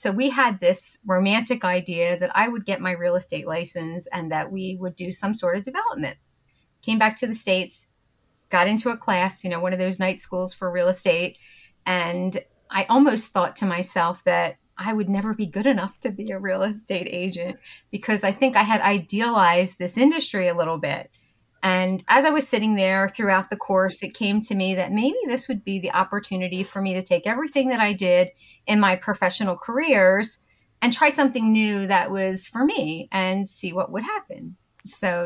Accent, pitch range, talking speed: American, 185-225 Hz, 200 wpm